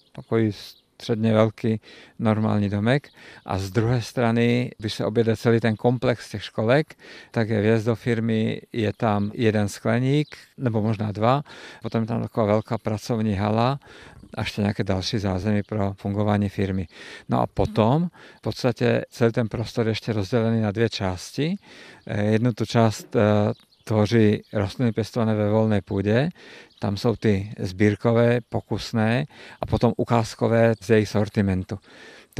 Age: 50-69